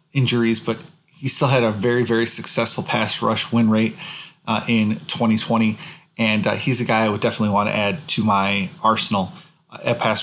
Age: 20-39